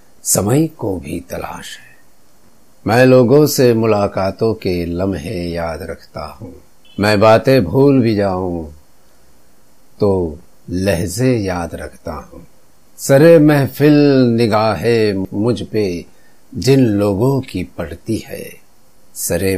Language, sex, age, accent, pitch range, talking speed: Hindi, male, 50-69, native, 90-125 Hz, 105 wpm